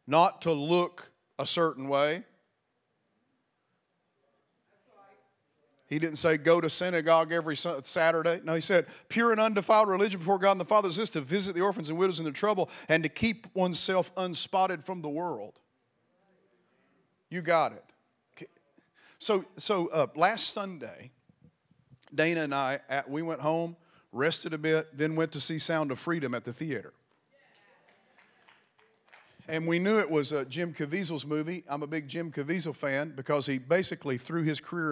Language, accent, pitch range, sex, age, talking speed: English, American, 145-175 Hz, male, 40-59, 160 wpm